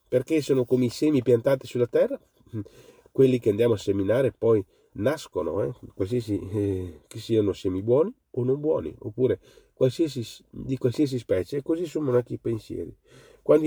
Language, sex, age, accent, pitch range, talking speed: Italian, male, 40-59, native, 100-130 Hz, 155 wpm